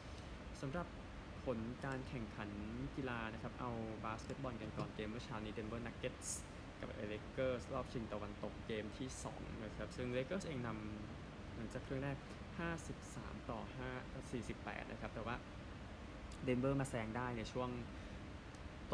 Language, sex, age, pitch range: Thai, male, 20-39, 105-130 Hz